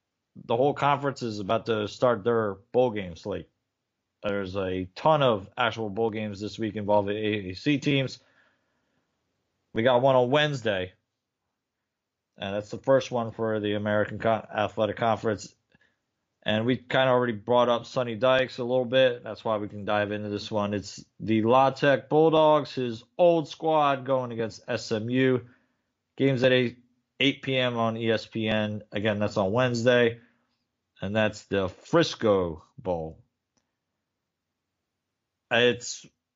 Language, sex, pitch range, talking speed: English, male, 105-130 Hz, 145 wpm